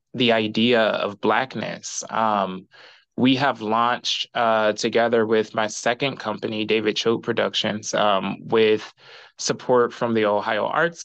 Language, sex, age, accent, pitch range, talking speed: English, male, 20-39, American, 110-125 Hz, 130 wpm